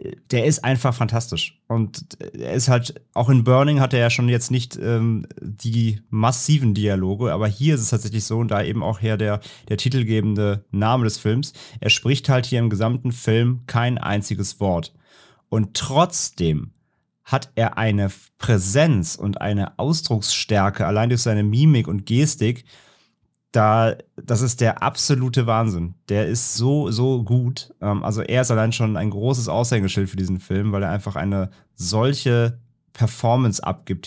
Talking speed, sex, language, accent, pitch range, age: 160 wpm, male, German, German, 105-130 Hz, 30-49